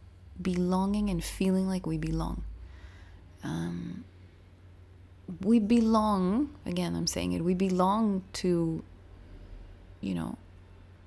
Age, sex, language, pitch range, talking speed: 20-39, female, English, 165-215 Hz, 100 wpm